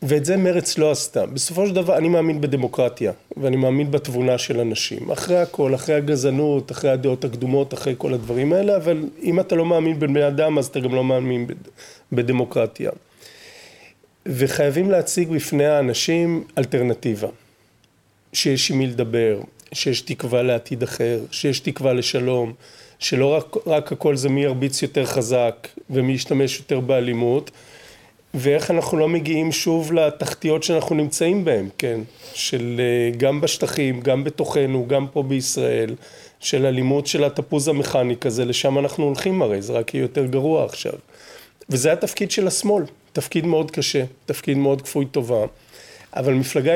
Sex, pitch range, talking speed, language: male, 130-165 Hz, 150 wpm, Hebrew